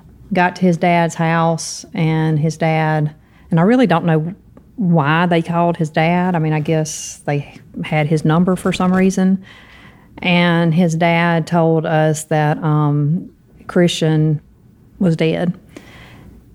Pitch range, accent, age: 160-180 Hz, American, 40-59